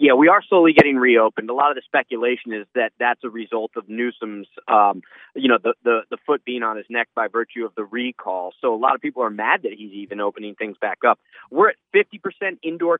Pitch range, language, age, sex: 120-170 Hz, English, 30-49, male